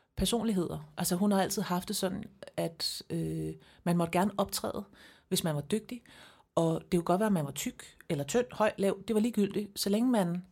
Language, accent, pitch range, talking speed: English, Danish, 165-205 Hz, 210 wpm